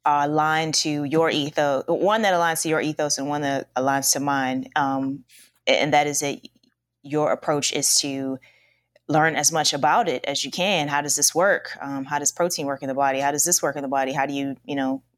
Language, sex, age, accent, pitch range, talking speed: English, female, 20-39, American, 140-170 Hz, 230 wpm